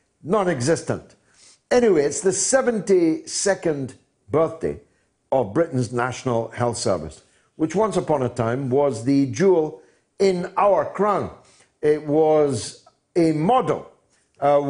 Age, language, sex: 50-69, English, male